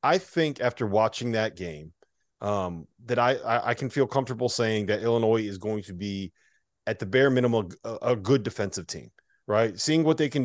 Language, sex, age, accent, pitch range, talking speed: English, male, 30-49, American, 100-125 Hz, 195 wpm